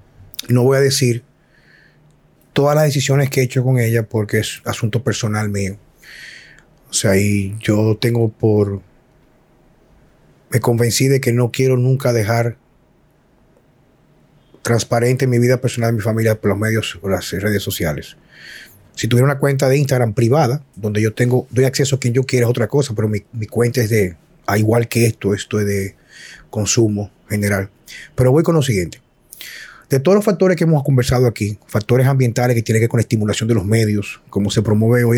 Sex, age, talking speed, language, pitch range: male, 30-49, 185 wpm, Spanish, 110-130 Hz